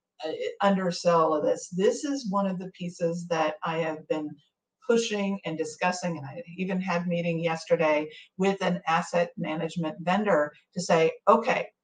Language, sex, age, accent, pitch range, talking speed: English, female, 50-69, American, 165-220 Hz, 155 wpm